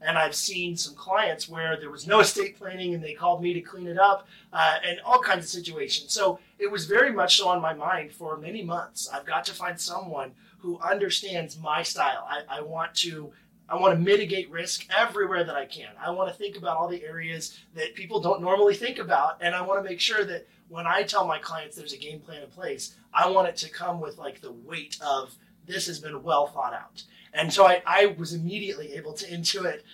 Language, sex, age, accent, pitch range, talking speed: English, male, 30-49, American, 160-200 Hz, 235 wpm